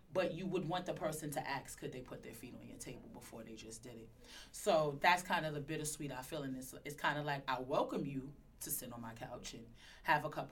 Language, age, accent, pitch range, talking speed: English, 30-49, American, 135-160 Hz, 270 wpm